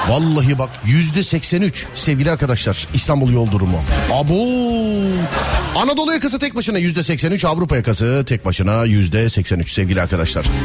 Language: Turkish